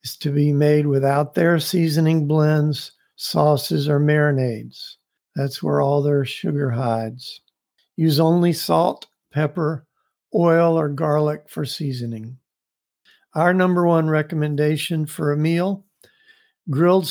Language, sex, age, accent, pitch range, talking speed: English, male, 50-69, American, 145-170 Hz, 115 wpm